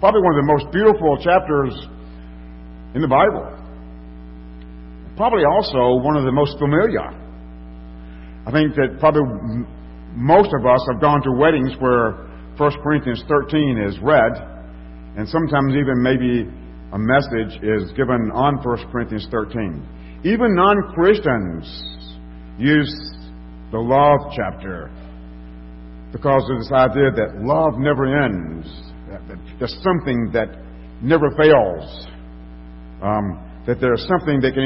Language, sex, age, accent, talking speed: English, male, 50-69, American, 125 wpm